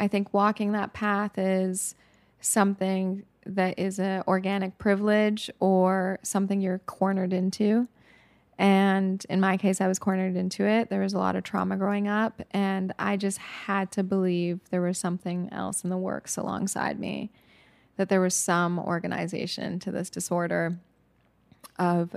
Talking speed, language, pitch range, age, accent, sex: 155 wpm, English, 180-195 Hz, 20-39, American, female